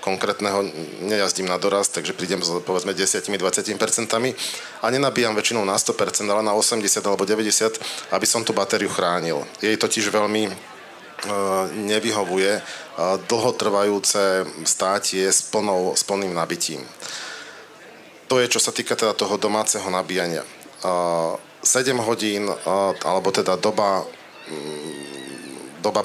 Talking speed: 135 wpm